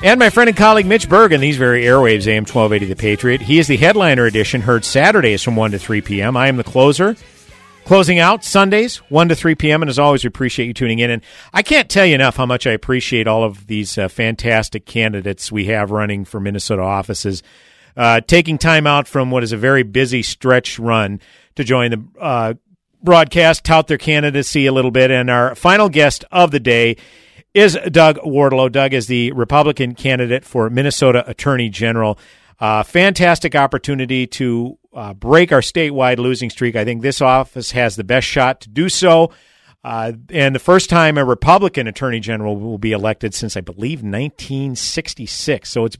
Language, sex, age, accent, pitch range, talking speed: English, male, 50-69, American, 115-150 Hz, 195 wpm